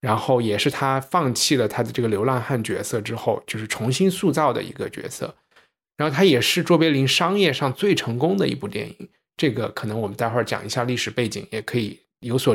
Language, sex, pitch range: Chinese, male, 110-140 Hz